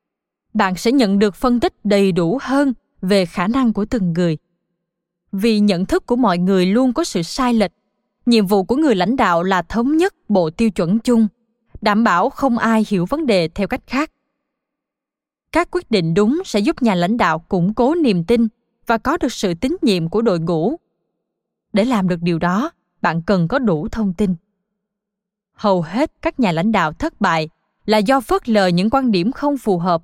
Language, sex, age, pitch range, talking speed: Vietnamese, female, 20-39, 190-255 Hz, 200 wpm